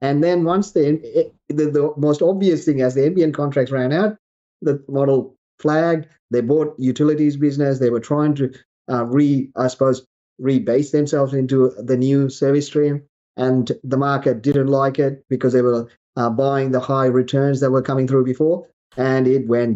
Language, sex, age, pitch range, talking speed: English, male, 30-49, 125-150 Hz, 180 wpm